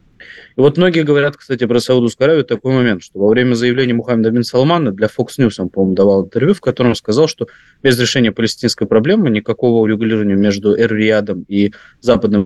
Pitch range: 105-135 Hz